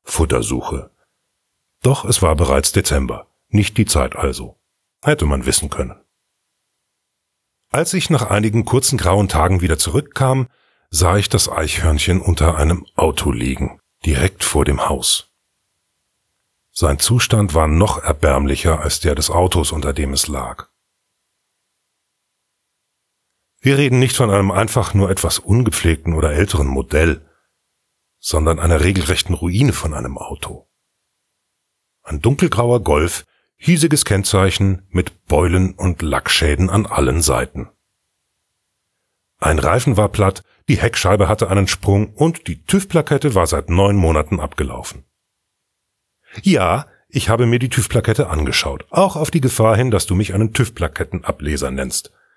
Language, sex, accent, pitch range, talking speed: German, male, German, 80-115 Hz, 130 wpm